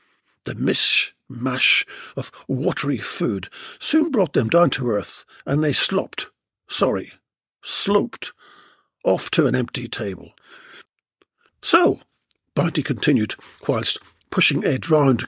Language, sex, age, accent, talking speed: English, male, 50-69, British, 110 wpm